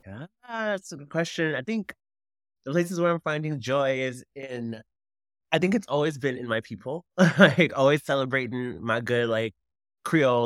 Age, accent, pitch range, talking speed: 20-39, American, 105-135 Hz, 170 wpm